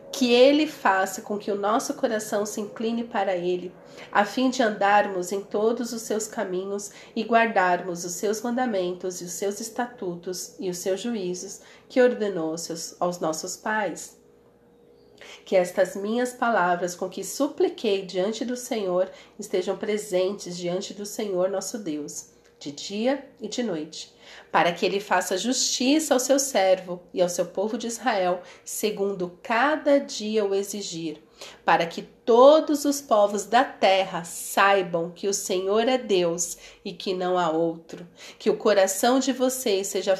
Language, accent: Portuguese, Brazilian